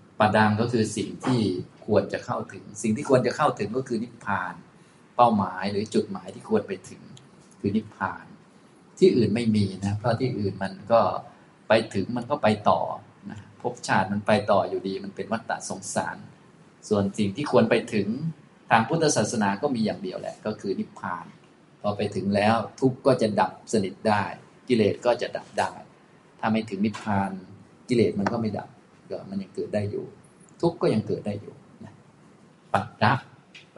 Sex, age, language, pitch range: male, 20-39, Thai, 100-120 Hz